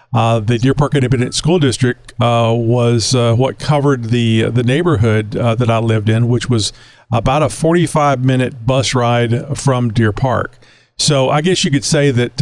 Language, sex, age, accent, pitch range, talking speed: English, male, 50-69, American, 115-135 Hz, 180 wpm